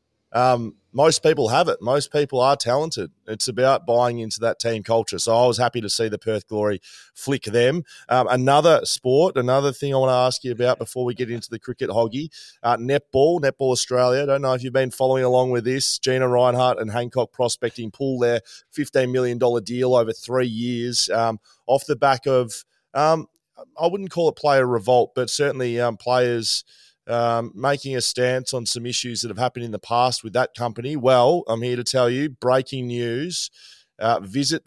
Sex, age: male, 20-39